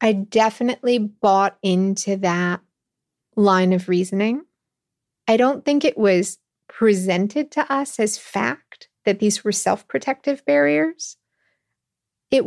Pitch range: 185-230 Hz